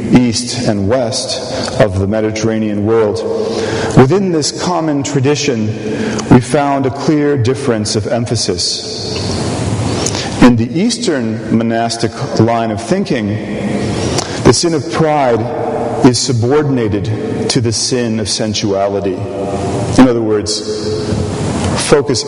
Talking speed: 110 wpm